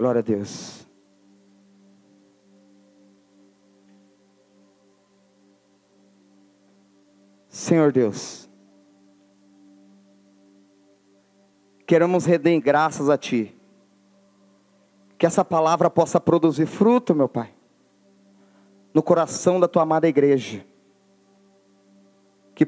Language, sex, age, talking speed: Portuguese, male, 40-59, 65 wpm